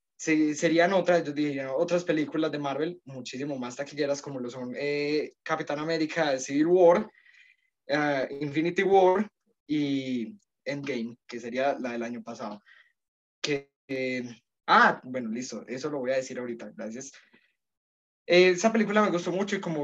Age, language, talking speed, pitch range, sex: 20-39, Spanish, 155 wpm, 130-175 Hz, male